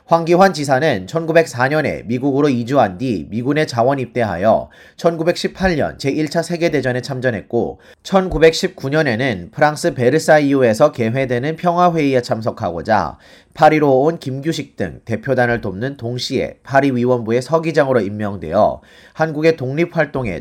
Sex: male